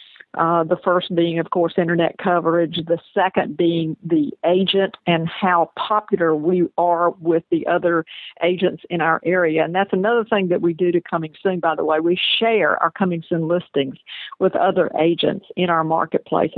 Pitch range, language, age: 170-205 Hz, English, 50-69